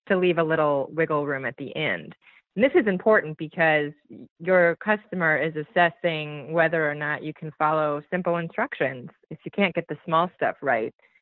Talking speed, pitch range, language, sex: 180 wpm, 150-175 Hz, English, female